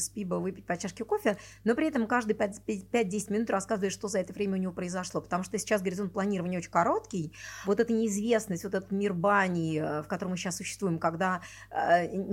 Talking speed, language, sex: 195 wpm, Russian, female